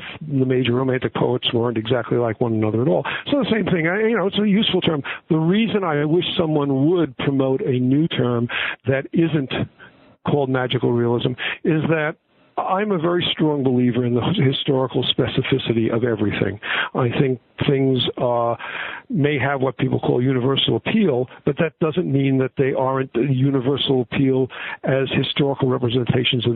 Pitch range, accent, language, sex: 125-155 Hz, American, English, male